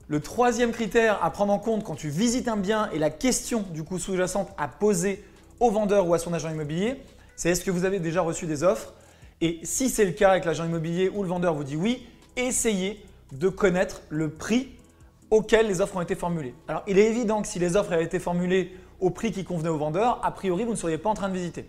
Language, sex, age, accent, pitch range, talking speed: French, male, 20-39, French, 170-215 Hz, 245 wpm